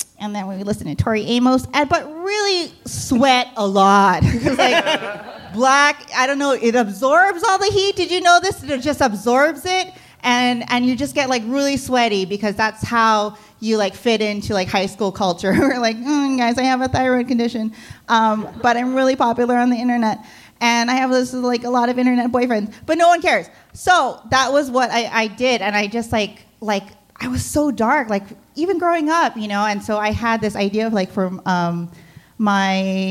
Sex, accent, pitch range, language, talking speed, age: female, American, 205-260 Hz, English, 205 wpm, 30-49